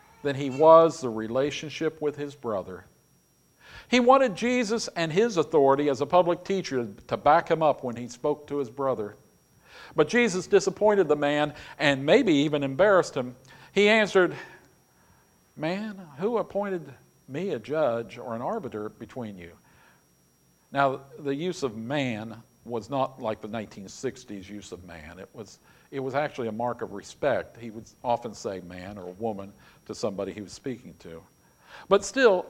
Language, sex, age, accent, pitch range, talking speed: English, male, 50-69, American, 125-195 Hz, 160 wpm